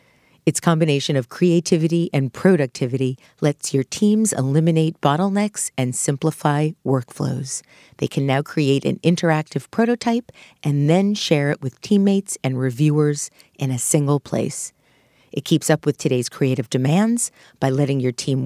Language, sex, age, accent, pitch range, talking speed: English, female, 50-69, American, 135-165 Hz, 145 wpm